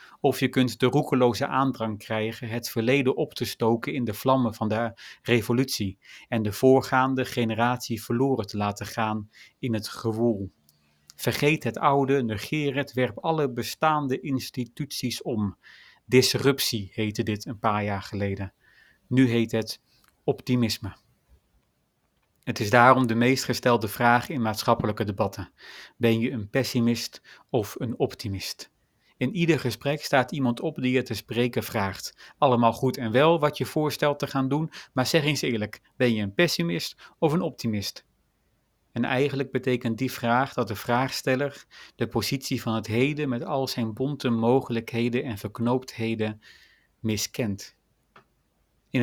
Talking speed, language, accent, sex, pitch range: 150 wpm, Dutch, Dutch, male, 110-130 Hz